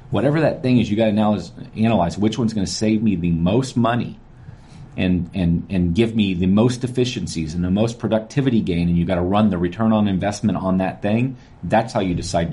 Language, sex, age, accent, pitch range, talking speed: English, male, 40-59, American, 90-115 Hz, 230 wpm